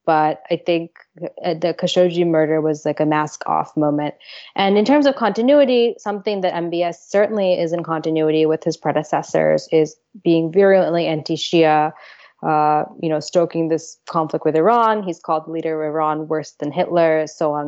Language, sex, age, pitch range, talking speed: English, female, 20-39, 160-195 Hz, 170 wpm